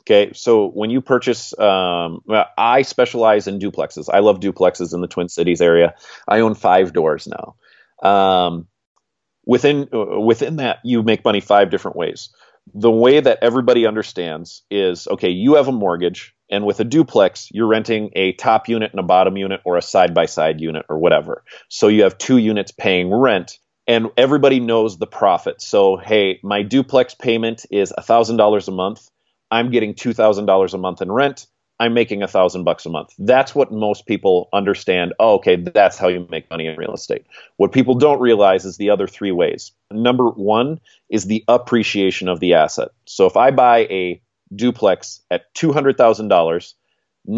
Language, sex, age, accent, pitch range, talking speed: English, male, 30-49, American, 95-120 Hz, 175 wpm